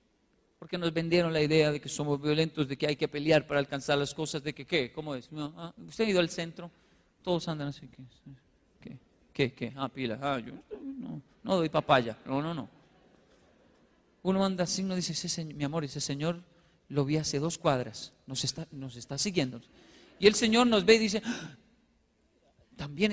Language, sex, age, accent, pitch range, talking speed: Spanish, male, 40-59, Spanish, 140-190 Hz, 200 wpm